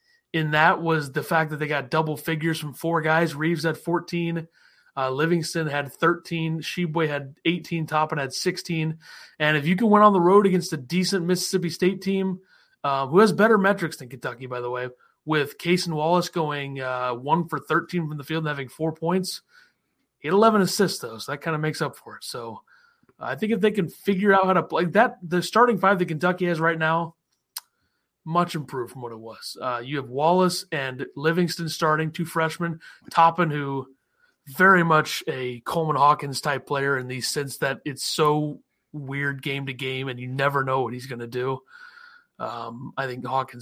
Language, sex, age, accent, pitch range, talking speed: English, male, 30-49, American, 135-180 Hz, 200 wpm